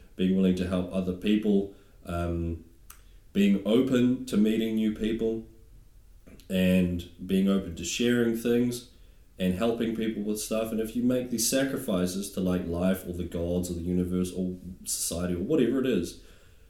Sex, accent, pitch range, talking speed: male, Australian, 90-110 Hz, 160 wpm